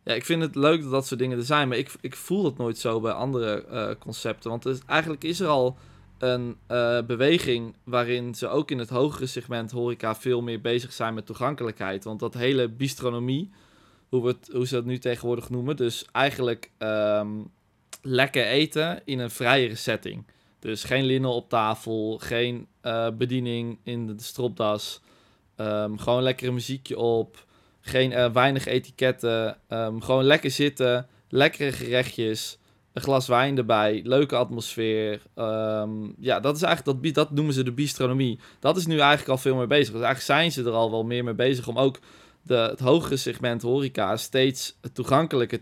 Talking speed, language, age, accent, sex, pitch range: 180 wpm, Dutch, 20-39, Dutch, male, 115-130 Hz